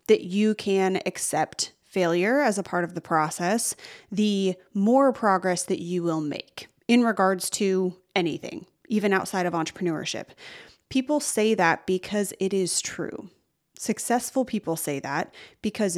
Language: English